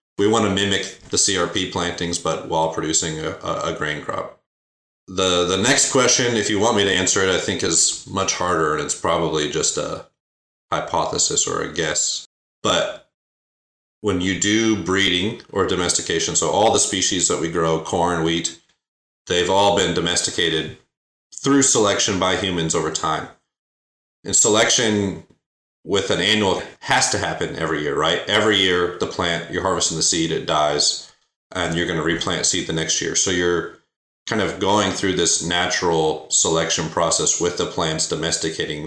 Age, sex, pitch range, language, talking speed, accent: 30-49, male, 80-100 Hz, English, 165 wpm, American